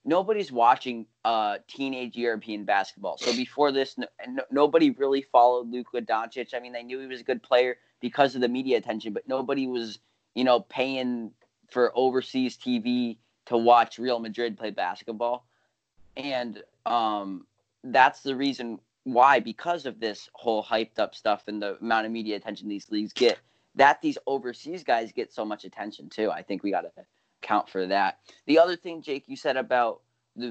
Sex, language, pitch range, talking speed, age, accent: male, English, 110-130 Hz, 175 wpm, 20-39, American